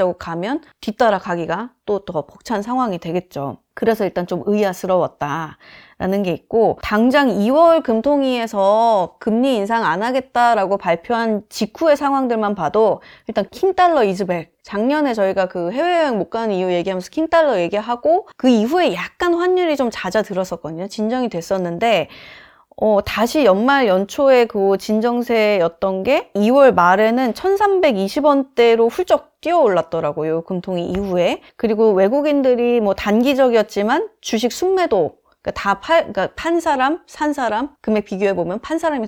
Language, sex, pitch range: Korean, female, 195-295 Hz